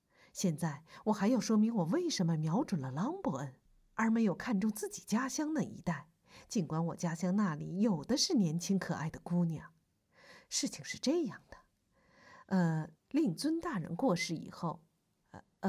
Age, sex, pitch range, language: 50-69, female, 170-225 Hz, Chinese